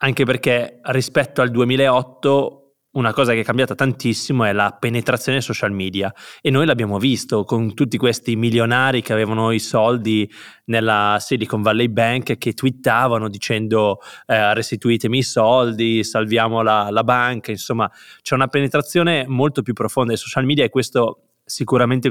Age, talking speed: 20-39, 150 wpm